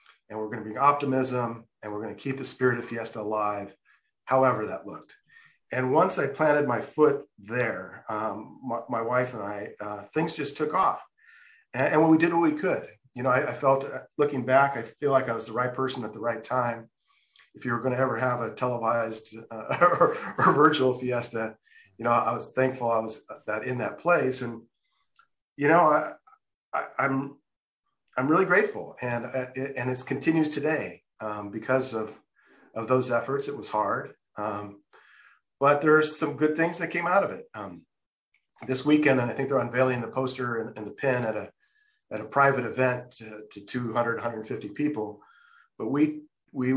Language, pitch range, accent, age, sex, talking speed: English, 115-140 Hz, American, 40-59, male, 195 wpm